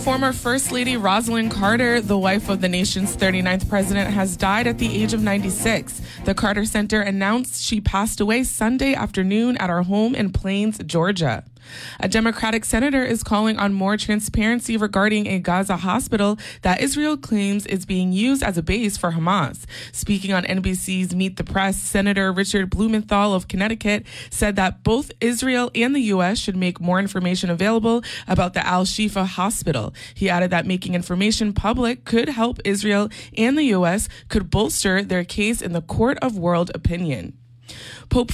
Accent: American